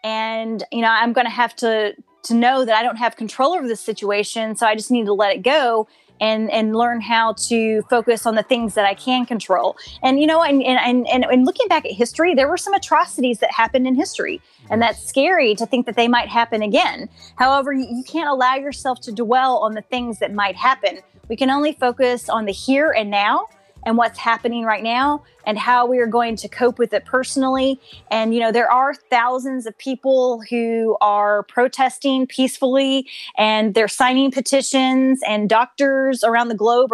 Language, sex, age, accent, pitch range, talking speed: English, female, 20-39, American, 225-260 Hz, 205 wpm